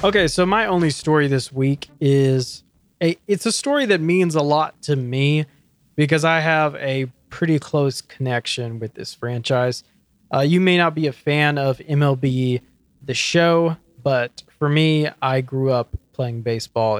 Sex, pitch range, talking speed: male, 125-160 Hz, 165 wpm